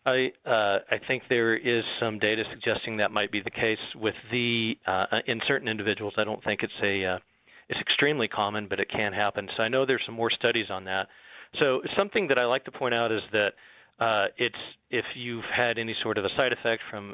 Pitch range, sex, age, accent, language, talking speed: 105-115 Hz, male, 40-59, American, English, 225 wpm